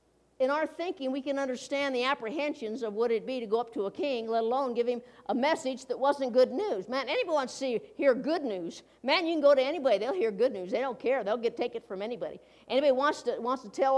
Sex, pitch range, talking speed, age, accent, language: female, 265-325 Hz, 260 wpm, 60-79, American, English